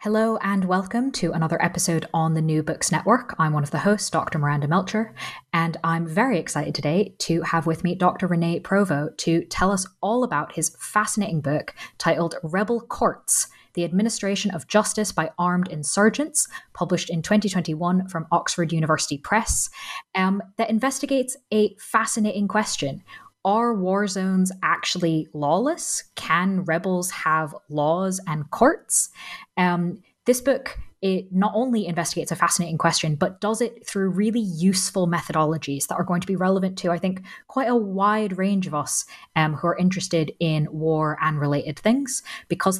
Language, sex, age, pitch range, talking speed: English, female, 20-39, 165-210 Hz, 160 wpm